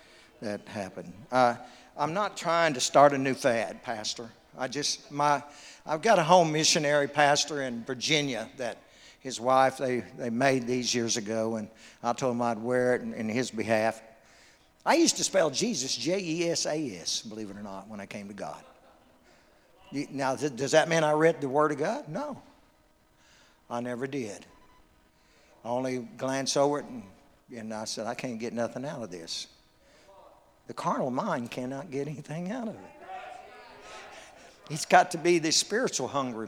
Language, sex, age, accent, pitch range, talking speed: English, male, 60-79, American, 120-150 Hz, 170 wpm